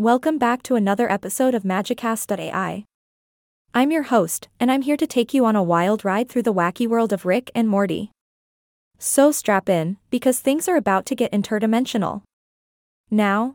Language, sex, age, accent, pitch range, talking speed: English, female, 20-39, American, 200-245 Hz, 175 wpm